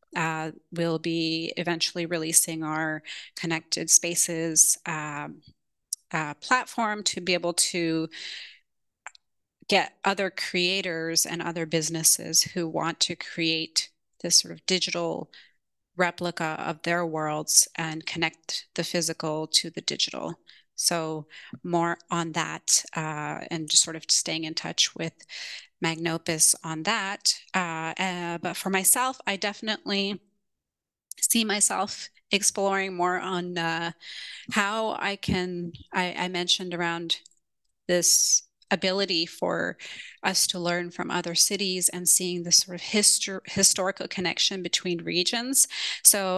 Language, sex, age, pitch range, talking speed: English, female, 30-49, 165-185 Hz, 125 wpm